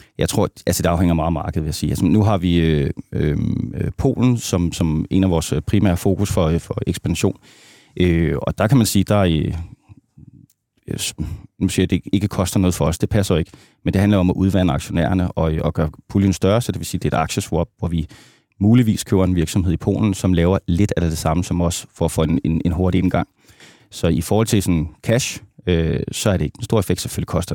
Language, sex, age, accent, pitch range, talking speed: Danish, male, 30-49, native, 85-100 Hz, 240 wpm